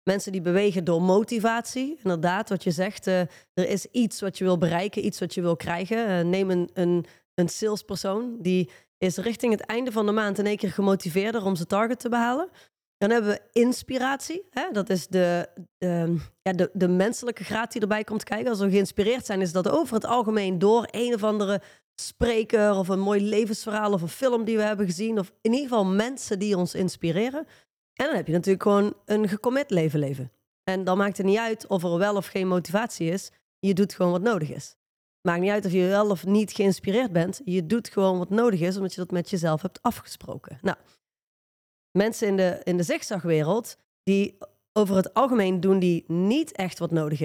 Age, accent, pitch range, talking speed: 30-49, Dutch, 185-225 Hz, 205 wpm